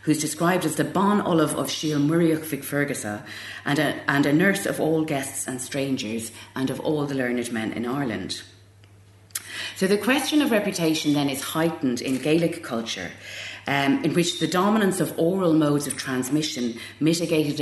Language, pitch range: English, 125-160 Hz